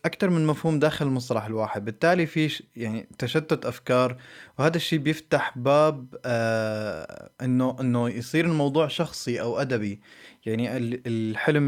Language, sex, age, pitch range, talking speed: Arabic, male, 20-39, 115-145 Hz, 125 wpm